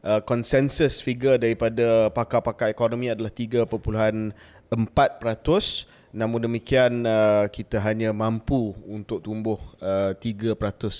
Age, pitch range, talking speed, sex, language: 20-39, 100-120 Hz, 95 wpm, male, Malay